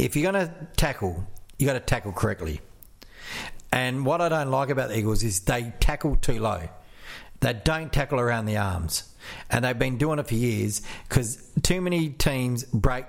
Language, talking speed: English, 190 wpm